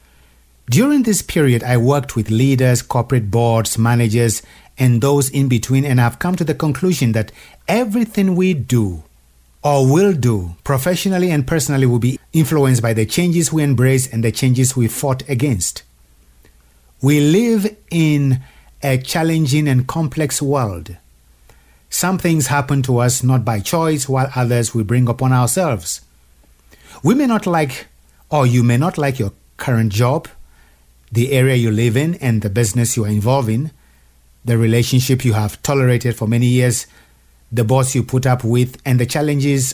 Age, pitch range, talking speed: 50-69, 110-145 Hz, 160 wpm